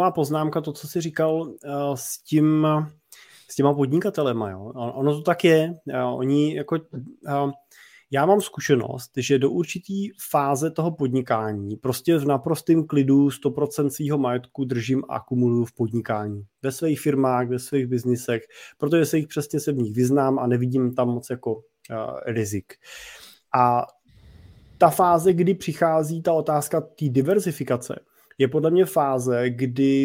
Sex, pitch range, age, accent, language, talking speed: male, 130-155 Hz, 20-39, native, Czech, 145 wpm